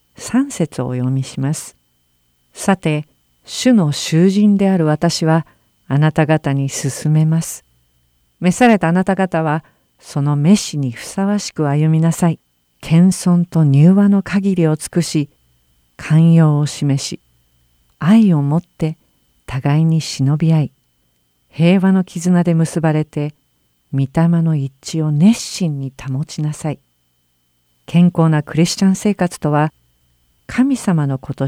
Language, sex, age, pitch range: Japanese, female, 50-69, 130-180 Hz